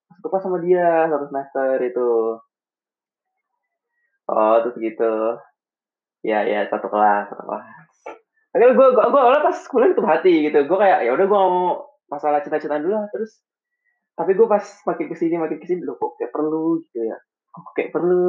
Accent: native